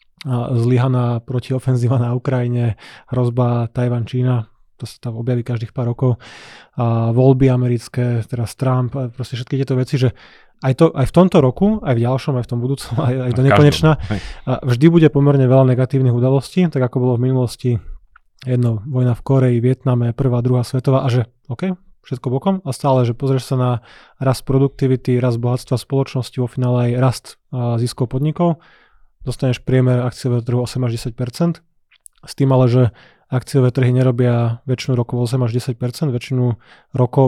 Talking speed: 165 wpm